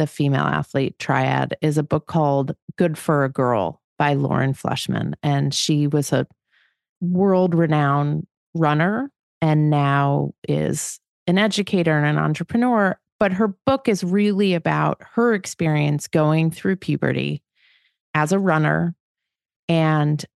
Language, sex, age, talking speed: English, female, 30-49, 130 wpm